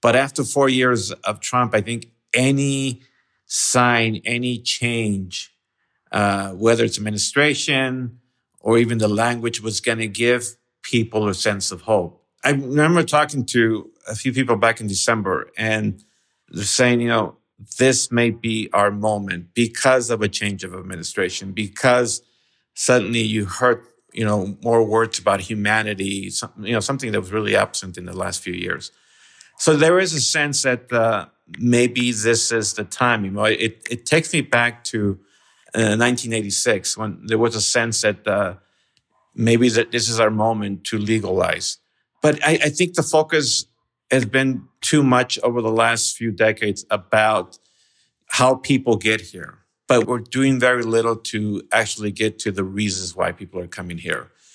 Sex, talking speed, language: male, 165 wpm, English